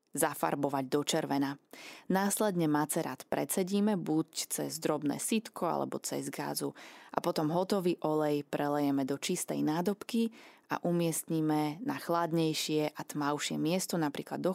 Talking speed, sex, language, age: 125 wpm, female, Slovak, 20-39